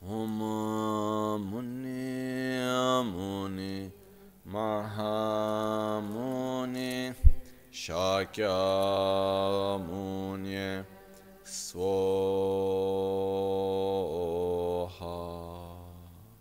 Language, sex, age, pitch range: Italian, male, 30-49, 95-110 Hz